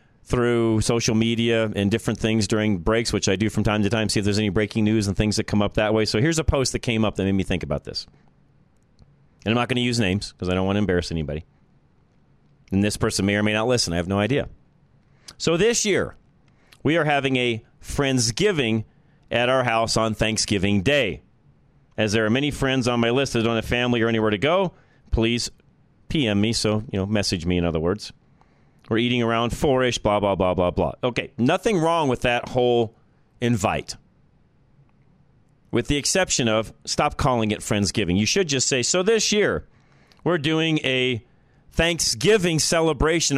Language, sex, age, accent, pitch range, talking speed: English, male, 40-59, American, 105-140 Hz, 200 wpm